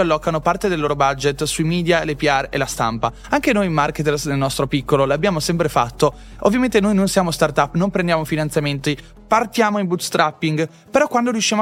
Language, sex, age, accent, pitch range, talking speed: Italian, male, 20-39, native, 150-195 Hz, 180 wpm